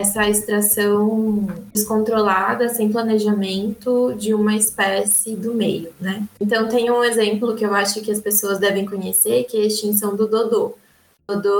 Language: Portuguese